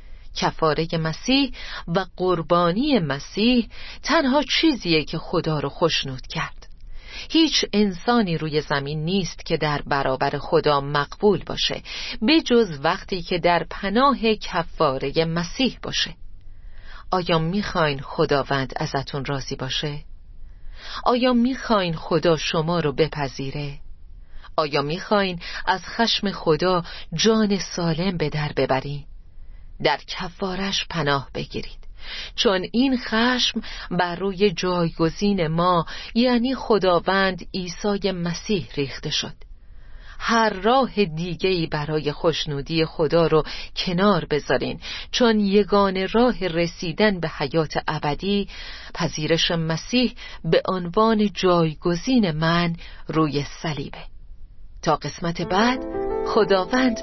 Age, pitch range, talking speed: 40-59, 150-205 Hz, 105 wpm